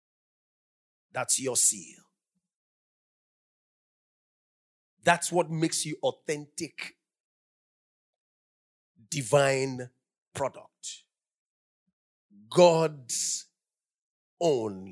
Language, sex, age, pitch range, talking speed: English, male, 50-69, 170-270 Hz, 50 wpm